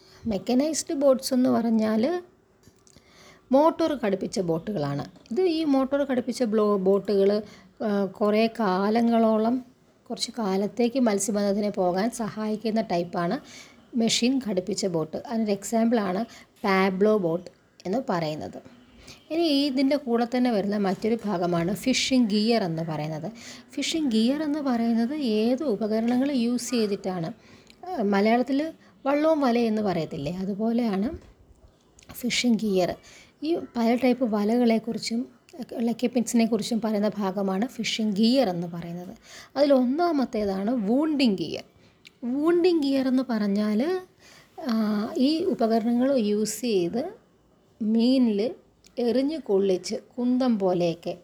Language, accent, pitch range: Malayalam, native, 200-255 Hz